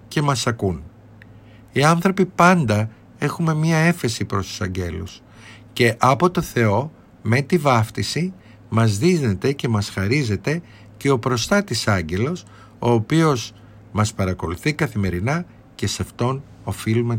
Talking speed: 120 wpm